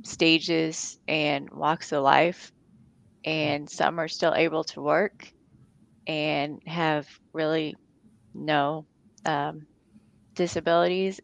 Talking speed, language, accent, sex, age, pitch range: 95 wpm, English, American, female, 20-39, 155-175 Hz